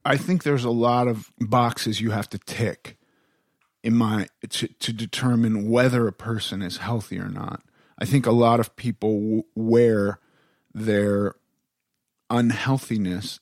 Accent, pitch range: American, 110-130 Hz